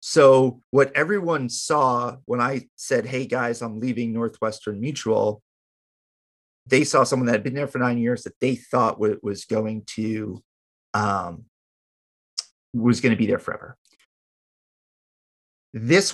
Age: 30-49